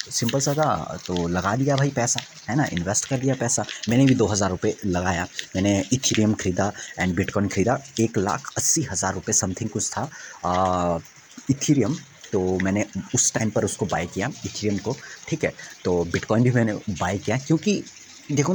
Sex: male